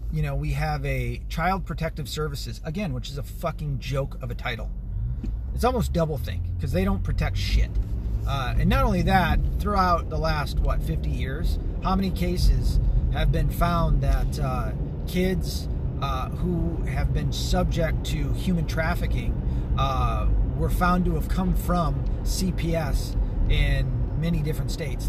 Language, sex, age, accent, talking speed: English, male, 30-49, American, 155 wpm